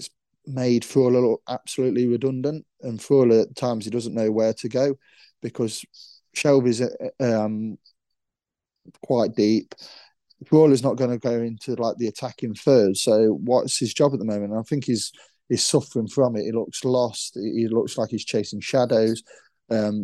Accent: British